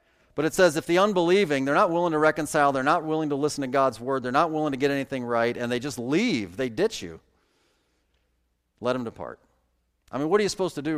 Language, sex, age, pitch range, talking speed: English, male, 40-59, 100-155 Hz, 240 wpm